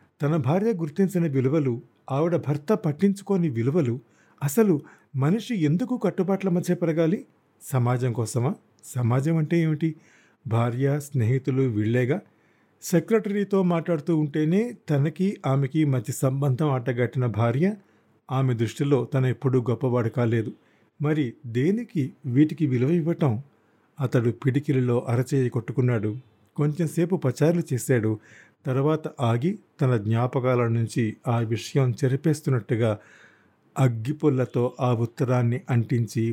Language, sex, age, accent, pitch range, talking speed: Telugu, male, 50-69, native, 120-155 Hz, 100 wpm